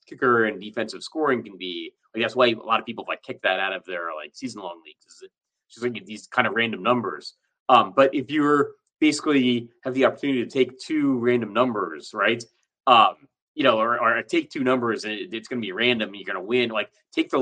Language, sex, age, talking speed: English, male, 30-49, 225 wpm